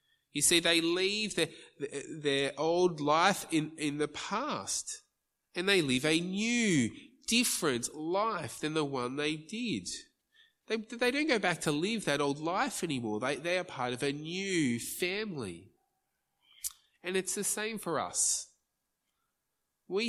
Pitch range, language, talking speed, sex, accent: 135-185 Hz, English, 150 wpm, male, Australian